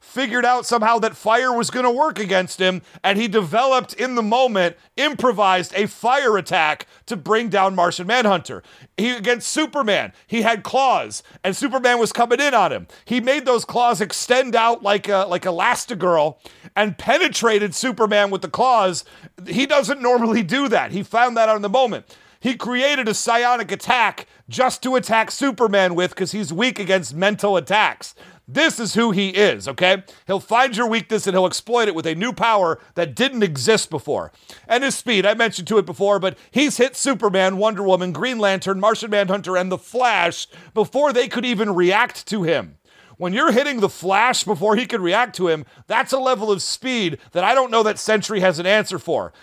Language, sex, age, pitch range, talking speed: English, male, 40-59, 195-250 Hz, 190 wpm